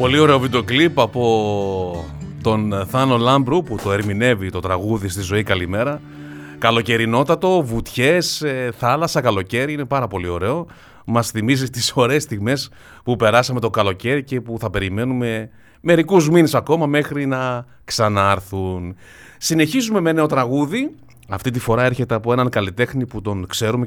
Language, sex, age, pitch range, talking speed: Greek, male, 30-49, 105-140 Hz, 145 wpm